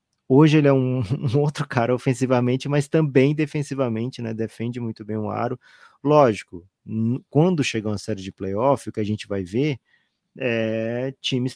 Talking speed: 170 wpm